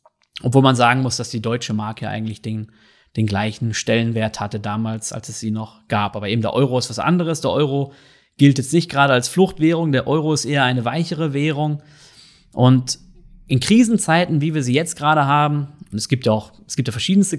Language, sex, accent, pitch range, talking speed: German, male, German, 120-150 Hz, 205 wpm